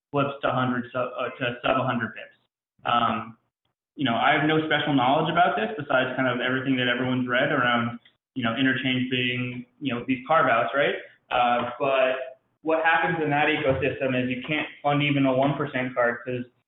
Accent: American